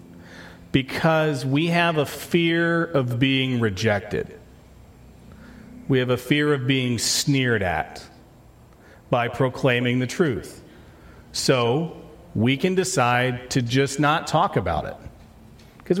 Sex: male